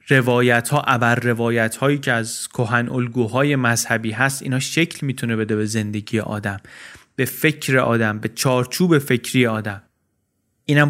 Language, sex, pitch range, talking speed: Persian, male, 115-130 Hz, 145 wpm